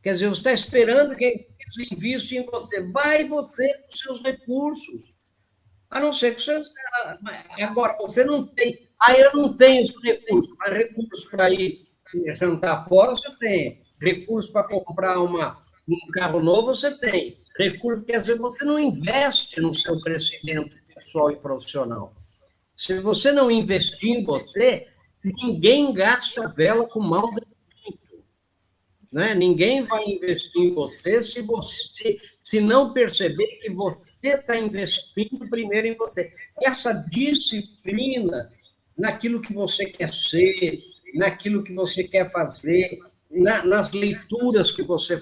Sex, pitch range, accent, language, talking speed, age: male, 180-255 Hz, Brazilian, Portuguese, 135 wpm, 50-69